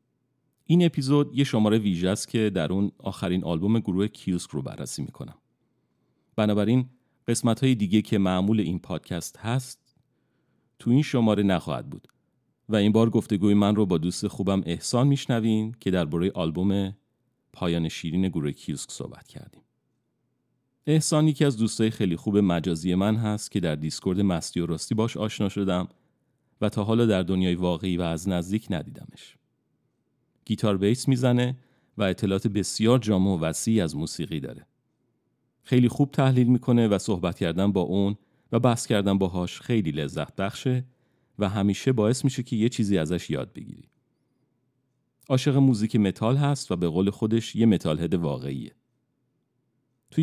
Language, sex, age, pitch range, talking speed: Persian, male, 40-59, 95-125 Hz, 155 wpm